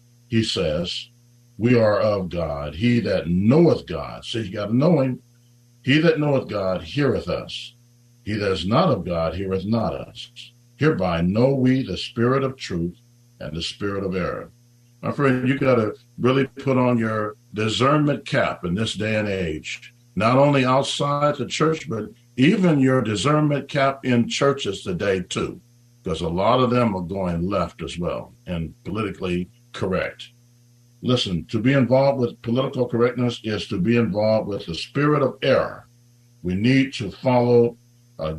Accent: American